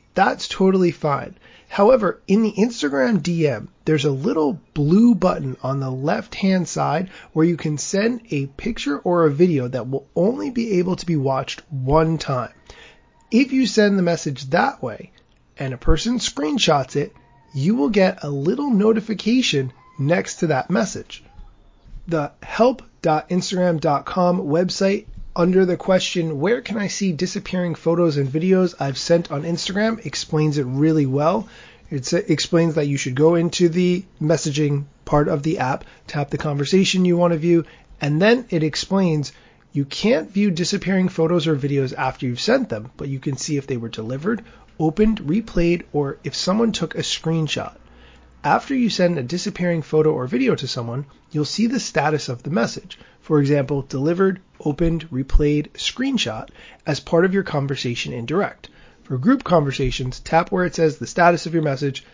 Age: 30-49